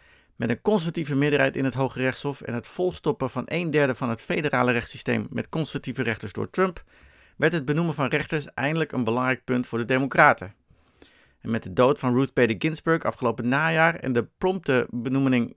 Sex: male